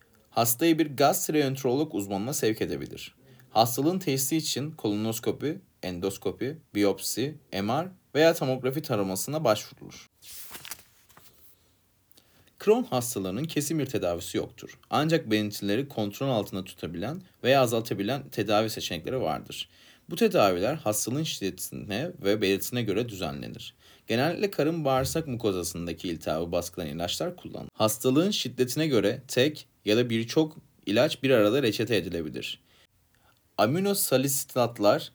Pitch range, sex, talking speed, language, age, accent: 105-150 Hz, male, 105 wpm, Turkish, 40-59, native